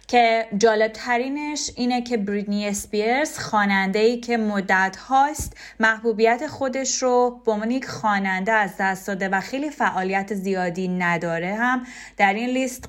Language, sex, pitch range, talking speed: Persian, female, 195-235 Hz, 125 wpm